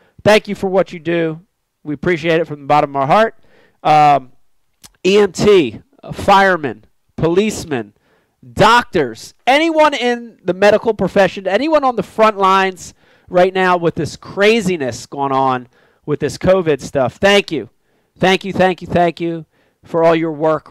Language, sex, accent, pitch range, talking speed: English, male, American, 145-210 Hz, 155 wpm